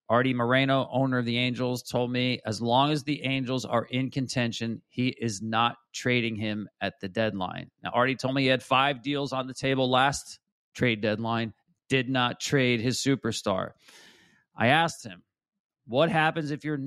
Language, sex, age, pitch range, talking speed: English, male, 40-59, 120-150 Hz, 180 wpm